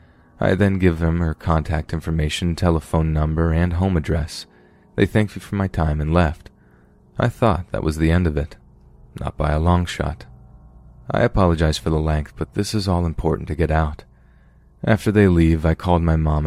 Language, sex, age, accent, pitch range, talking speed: English, male, 30-49, American, 75-95 Hz, 195 wpm